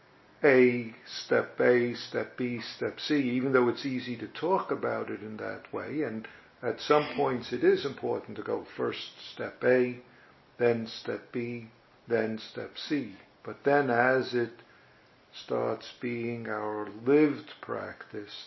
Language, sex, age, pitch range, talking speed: English, male, 50-69, 115-125 Hz, 145 wpm